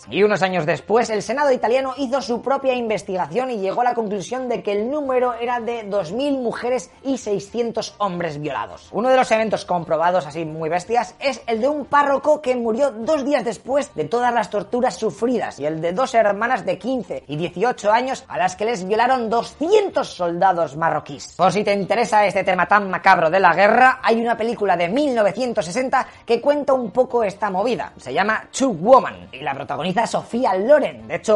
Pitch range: 185-255 Hz